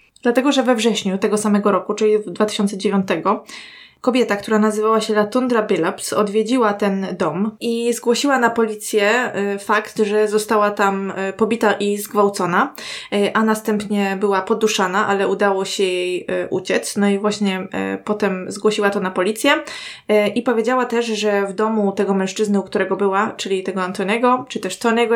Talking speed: 155 wpm